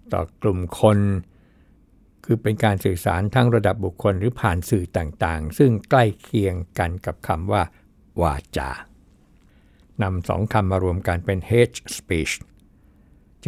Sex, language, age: male, Thai, 60-79